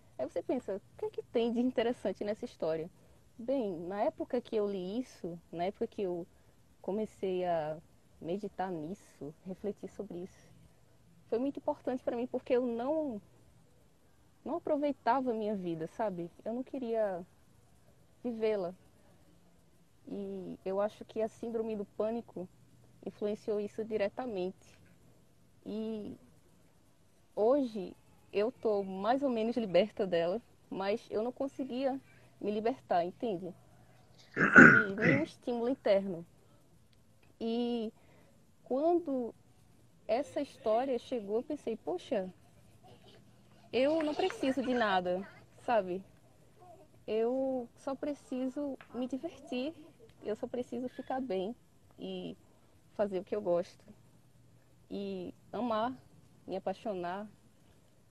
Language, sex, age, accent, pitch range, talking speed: Portuguese, female, 20-39, Brazilian, 190-255 Hz, 115 wpm